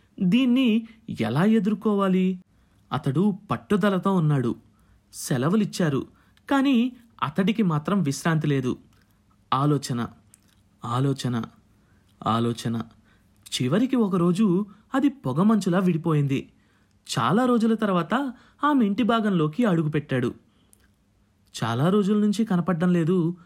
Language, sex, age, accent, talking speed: Telugu, male, 30-49, native, 75 wpm